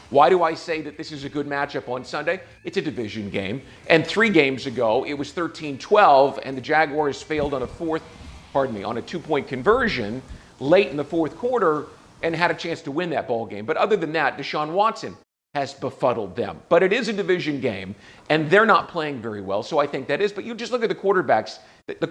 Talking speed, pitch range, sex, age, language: 220 wpm, 130-165 Hz, male, 50-69, English